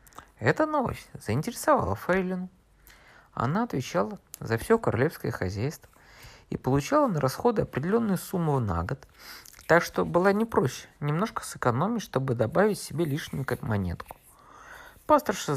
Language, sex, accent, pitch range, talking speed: Russian, male, native, 115-175 Hz, 125 wpm